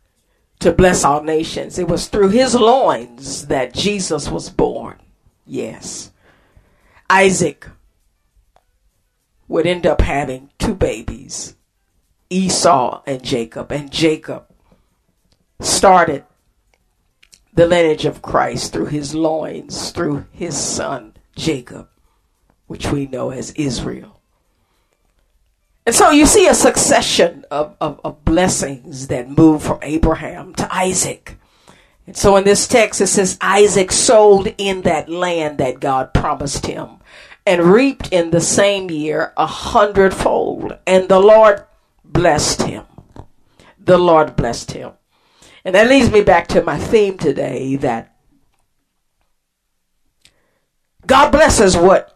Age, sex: 50-69, female